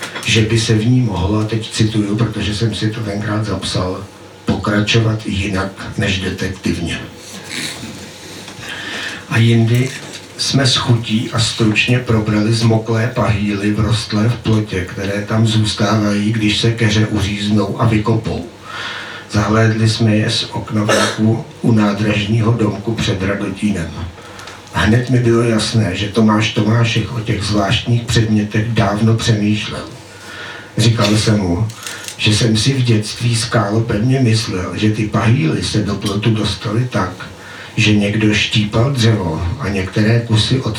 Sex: male